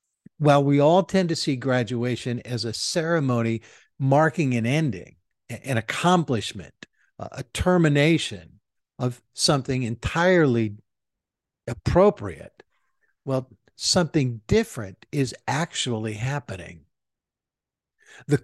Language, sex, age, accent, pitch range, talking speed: English, male, 60-79, American, 115-155 Hz, 90 wpm